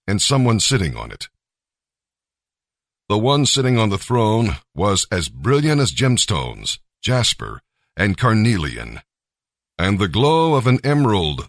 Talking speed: 130 wpm